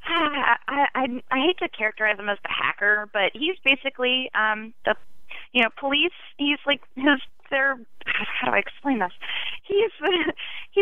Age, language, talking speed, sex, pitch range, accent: 20-39, English, 155 wpm, female, 205-280 Hz, American